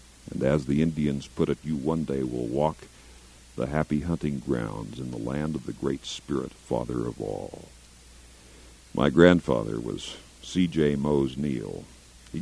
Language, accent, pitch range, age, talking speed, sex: English, American, 65-95 Hz, 50-69, 160 wpm, male